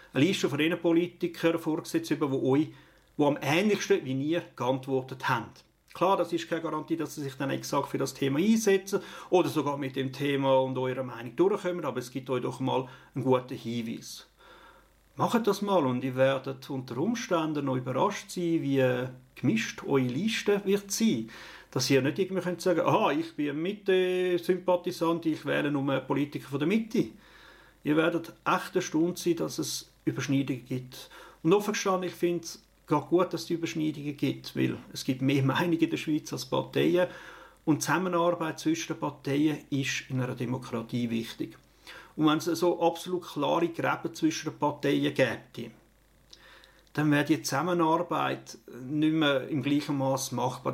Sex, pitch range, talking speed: male, 135-175 Hz, 170 wpm